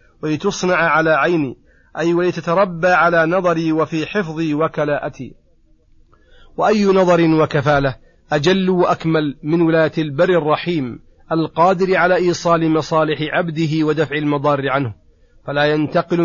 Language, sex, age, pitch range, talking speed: Arabic, male, 40-59, 145-170 Hz, 105 wpm